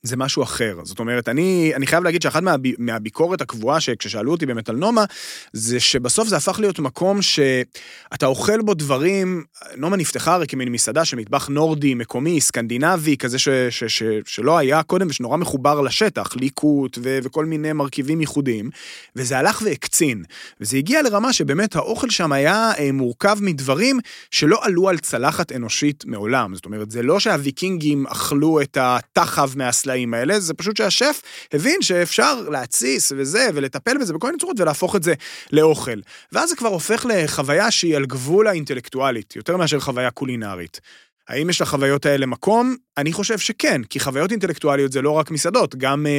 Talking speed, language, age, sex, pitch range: 145 wpm, Hebrew, 30-49, male, 135-175 Hz